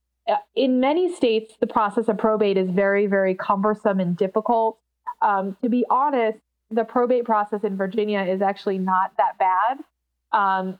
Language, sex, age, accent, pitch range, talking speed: English, female, 20-39, American, 190-230 Hz, 155 wpm